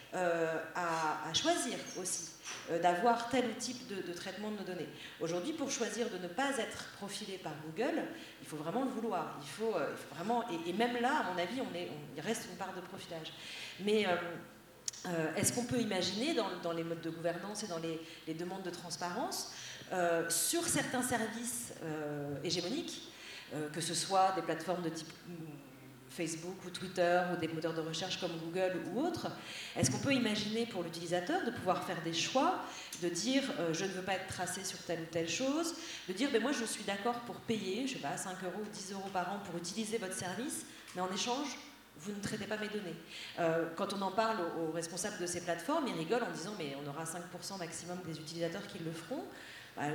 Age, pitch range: 40-59, 165-225 Hz